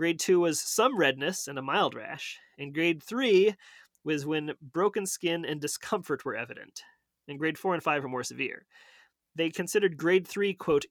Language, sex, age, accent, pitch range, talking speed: English, male, 30-49, American, 140-185 Hz, 180 wpm